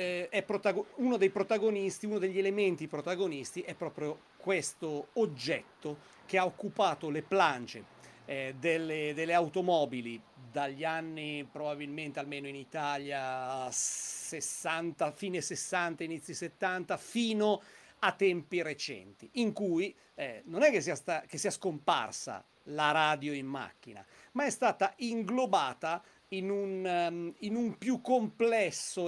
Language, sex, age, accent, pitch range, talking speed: Italian, male, 40-59, native, 150-205 Hz, 125 wpm